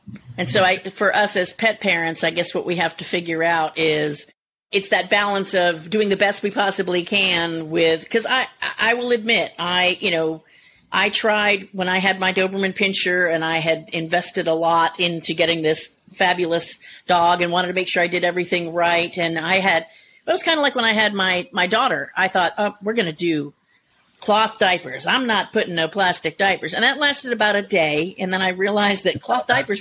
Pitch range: 170-215 Hz